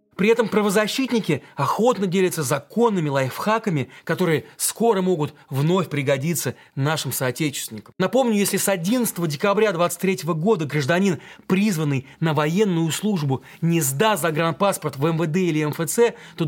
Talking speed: 125 wpm